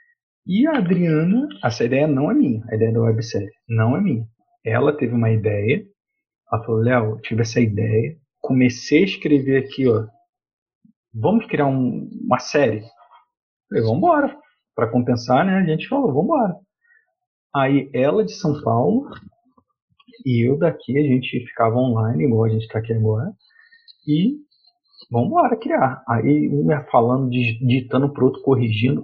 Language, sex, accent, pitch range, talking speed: Portuguese, male, Brazilian, 115-195 Hz, 155 wpm